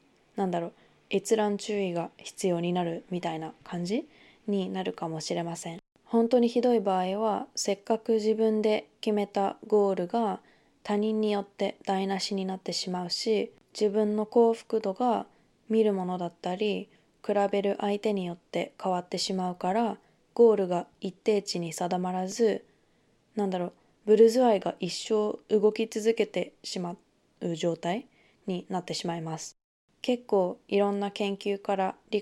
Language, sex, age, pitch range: Japanese, female, 20-39, 180-215 Hz